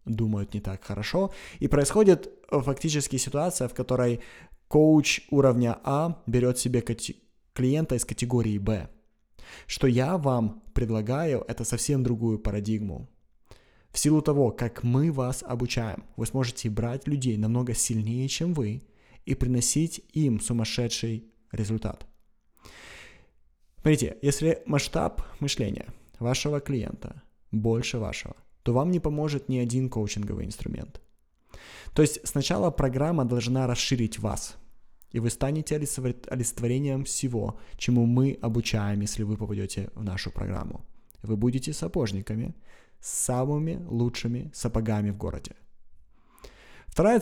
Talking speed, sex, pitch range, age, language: 120 wpm, male, 110-135 Hz, 20-39, Russian